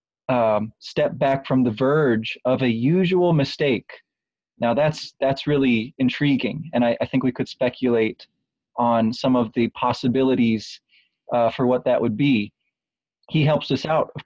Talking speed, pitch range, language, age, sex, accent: 160 wpm, 125-150 Hz, English, 30-49, male, American